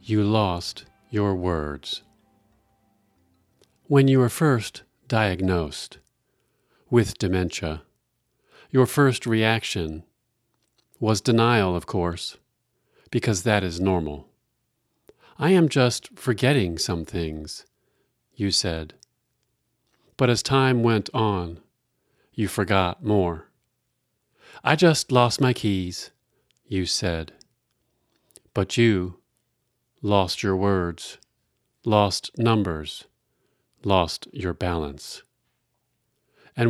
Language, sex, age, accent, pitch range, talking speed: English, male, 40-59, American, 85-115 Hz, 90 wpm